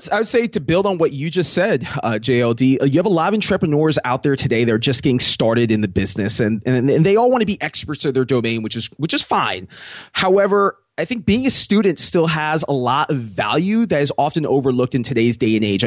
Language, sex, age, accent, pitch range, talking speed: English, male, 20-39, American, 135-185 Hz, 245 wpm